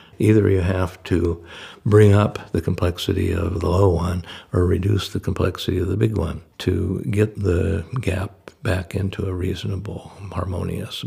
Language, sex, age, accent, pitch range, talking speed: English, male, 60-79, American, 85-100 Hz, 155 wpm